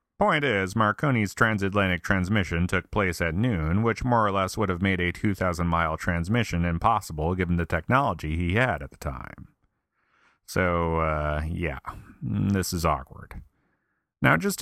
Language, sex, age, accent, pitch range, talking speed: English, male, 30-49, American, 85-110 Hz, 150 wpm